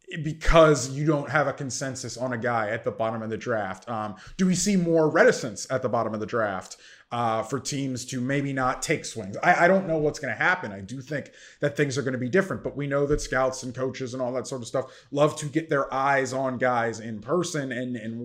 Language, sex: English, male